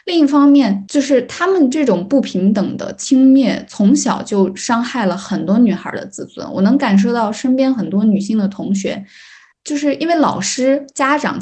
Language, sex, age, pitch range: Chinese, female, 10-29, 195-265 Hz